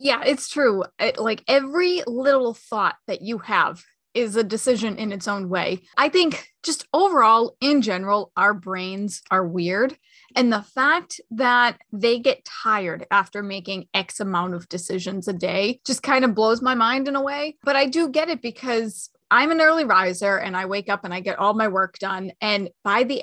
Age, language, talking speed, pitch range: 30-49, English, 195 wpm, 200-260 Hz